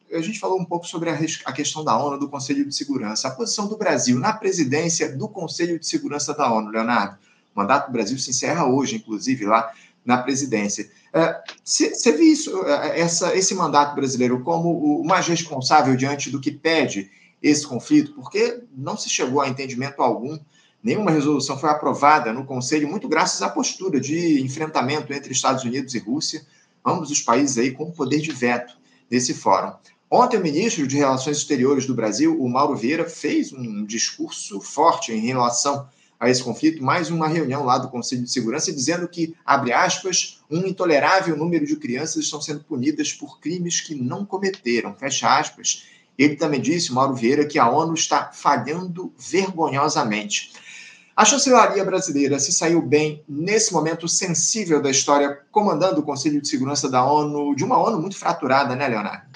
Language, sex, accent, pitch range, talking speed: Portuguese, male, Brazilian, 135-170 Hz, 175 wpm